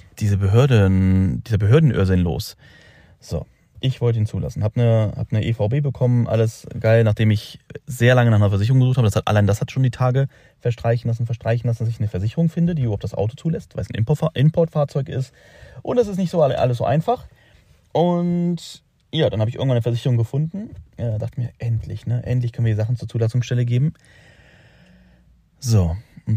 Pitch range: 105-130 Hz